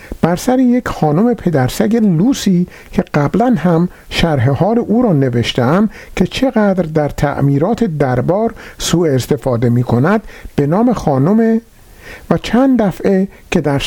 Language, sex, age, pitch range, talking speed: Persian, male, 50-69, 135-215 Hz, 130 wpm